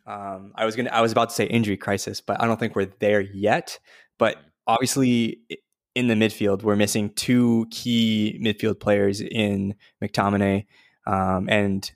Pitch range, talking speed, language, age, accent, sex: 100-115 Hz, 165 wpm, English, 20-39, American, male